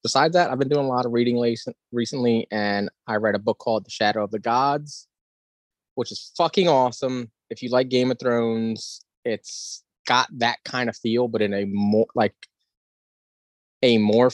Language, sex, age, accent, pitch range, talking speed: English, male, 20-39, American, 100-120 Hz, 185 wpm